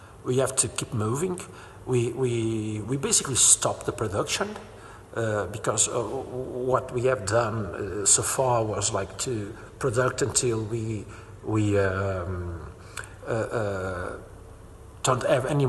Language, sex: English, male